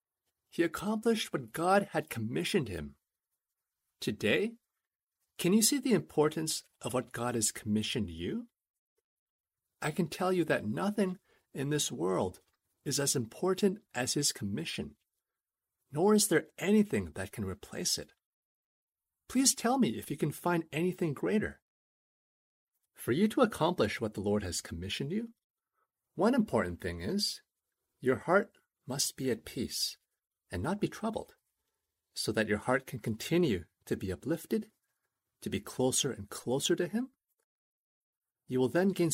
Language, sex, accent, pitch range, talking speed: English, male, American, 120-190 Hz, 145 wpm